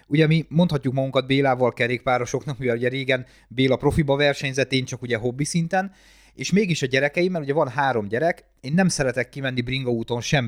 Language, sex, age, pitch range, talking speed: Hungarian, male, 30-49, 120-145 Hz, 190 wpm